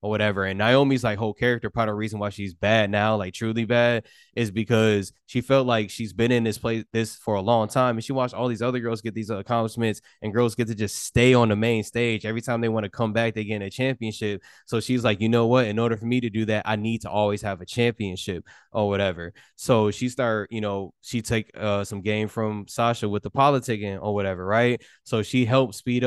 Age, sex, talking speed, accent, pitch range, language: 20-39, male, 255 wpm, American, 105-115 Hz, English